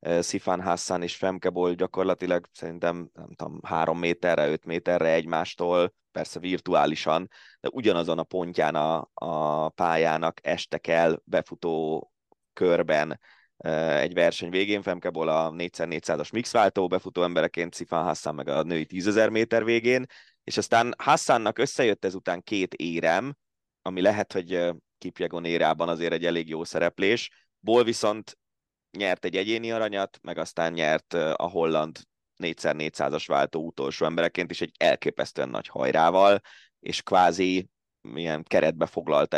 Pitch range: 80-95 Hz